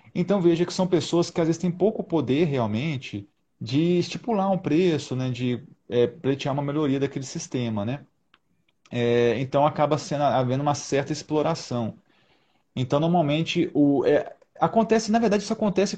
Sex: male